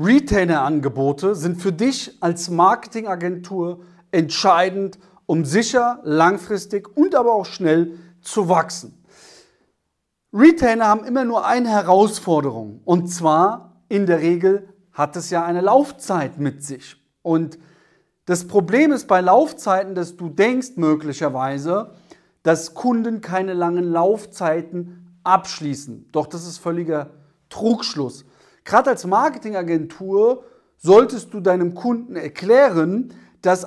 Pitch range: 170-220 Hz